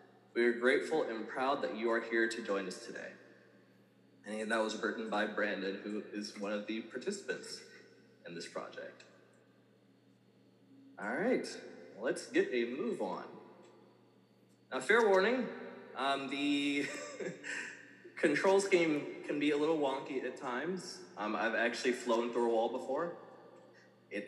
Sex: male